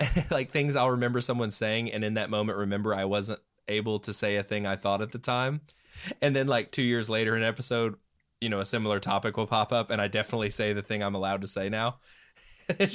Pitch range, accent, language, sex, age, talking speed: 100-115 Hz, American, English, male, 20-39, 235 wpm